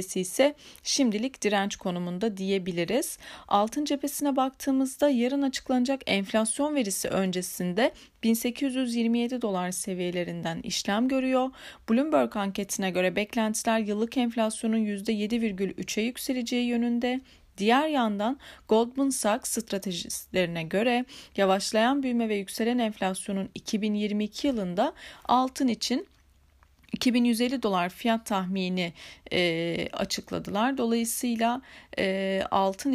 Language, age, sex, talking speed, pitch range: Turkish, 30-49, female, 95 wpm, 195-245 Hz